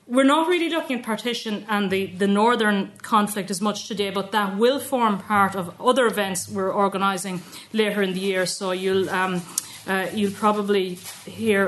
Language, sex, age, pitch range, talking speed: English, female, 30-49, 190-220 Hz, 180 wpm